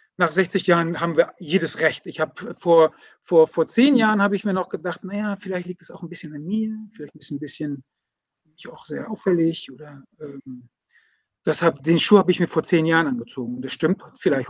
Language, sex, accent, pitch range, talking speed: German, male, German, 160-200 Hz, 215 wpm